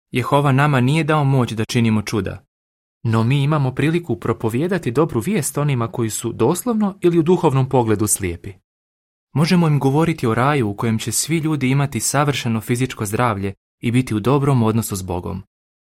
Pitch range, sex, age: 105-145 Hz, male, 30-49